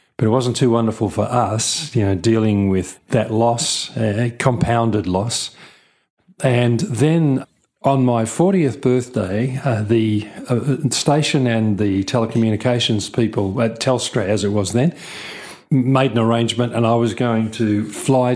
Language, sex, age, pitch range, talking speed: English, male, 40-59, 105-130 Hz, 150 wpm